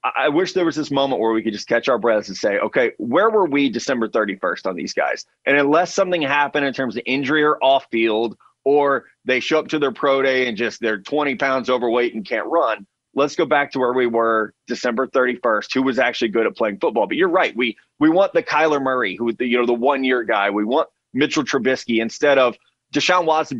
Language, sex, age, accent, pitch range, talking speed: English, male, 30-49, American, 125-155 Hz, 230 wpm